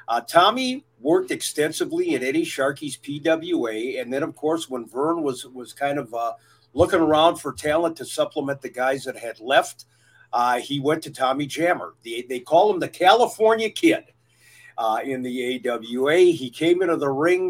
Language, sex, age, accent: English, male, 50-69, American